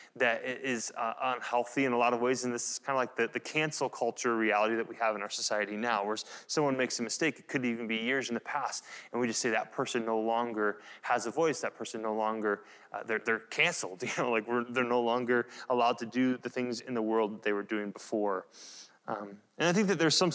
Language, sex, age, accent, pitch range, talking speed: English, male, 30-49, American, 115-140 Hz, 255 wpm